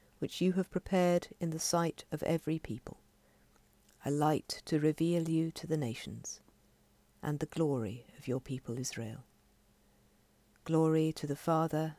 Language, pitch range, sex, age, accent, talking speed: English, 130-165 Hz, female, 50-69, British, 145 wpm